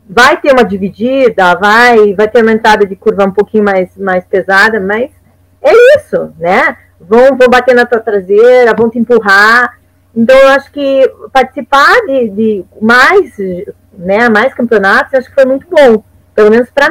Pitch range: 210-270 Hz